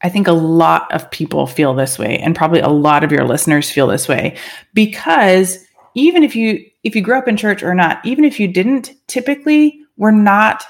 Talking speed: 215 wpm